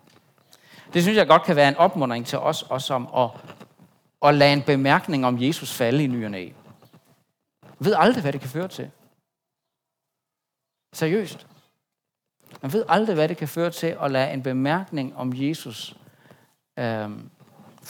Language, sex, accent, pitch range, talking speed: Danish, male, native, 130-170 Hz, 155 wpm